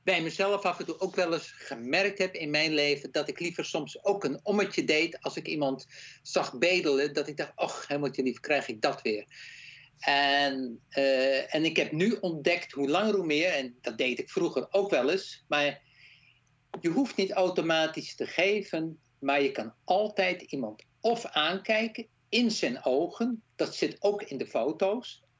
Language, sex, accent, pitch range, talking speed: Dutch, male, Dutch, 135-195 Hz, 185 wpm